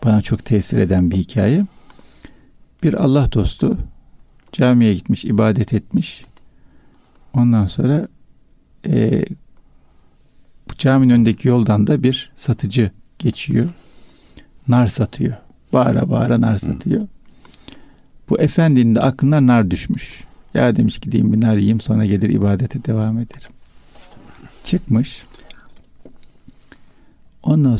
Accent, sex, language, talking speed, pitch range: native, male, Turkish, 105 wpm, 105-130 Hz